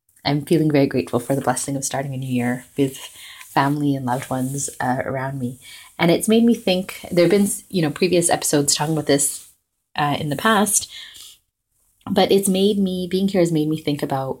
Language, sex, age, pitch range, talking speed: English, female, 20-39, 130-155 Hz, 210 wpm